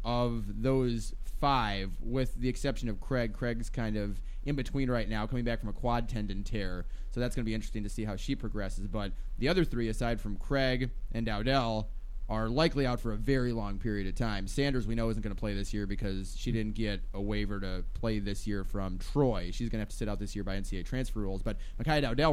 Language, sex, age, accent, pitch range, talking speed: English, male, 20-39, American, 100-130 Hz, 240 wpm